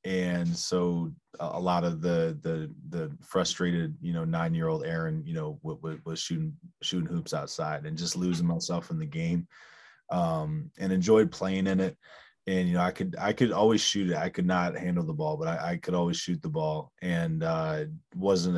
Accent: American